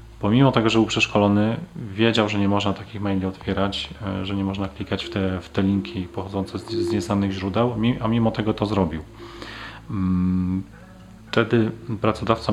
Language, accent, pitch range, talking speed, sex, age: Polish, native, 95-110 Hz, 155 wpm, male, 30-49